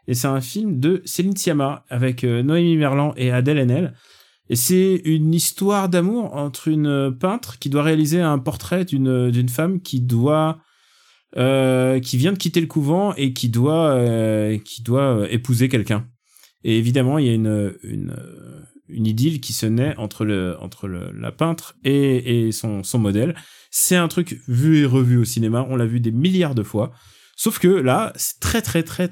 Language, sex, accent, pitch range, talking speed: French, male, French, 120-155 Hz, 170 wpm